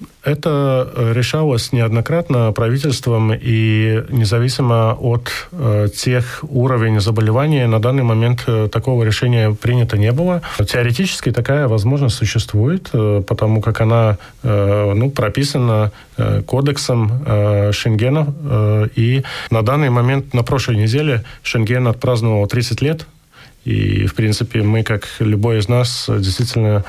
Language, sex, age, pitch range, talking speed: Russian, male, 20-39, 110-125 Hz, 110 wpm